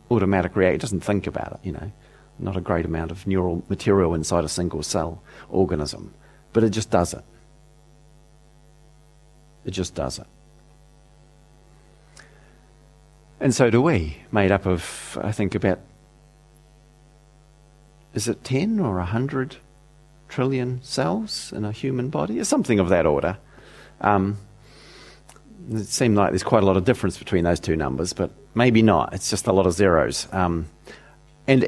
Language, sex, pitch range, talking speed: English, male, 95-145 Hz, 155 wpm